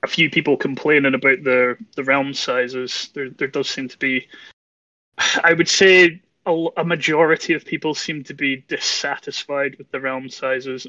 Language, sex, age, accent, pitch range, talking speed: English, male, 20-39, British, 130-160 Hz, 170 wpm